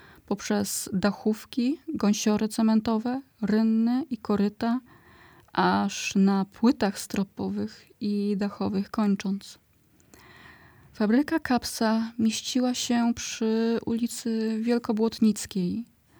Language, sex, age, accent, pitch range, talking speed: Polish, female, 20-39, native, 195-230 Hz, 80 wpm